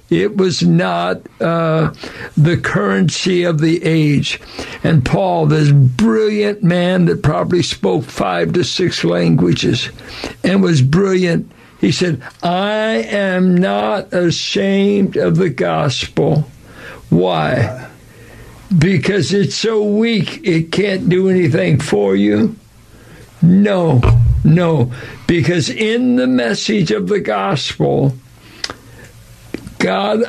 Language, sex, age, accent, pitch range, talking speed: English, male, 60-79, American, 135-195 Hz, 105 wpm